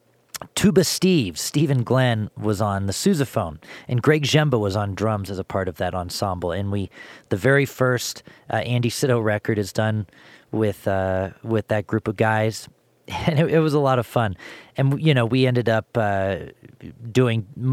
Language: English